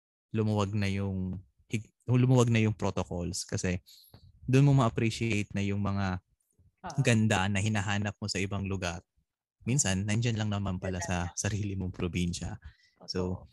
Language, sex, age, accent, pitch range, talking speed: Filipino, male, 20-39, native, 95-125 Hz, 135 wpm